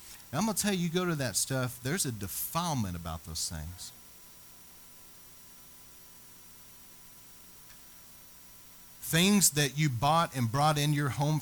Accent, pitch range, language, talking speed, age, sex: American, 100-145 Hz, English, 130 wpm, 40-59, male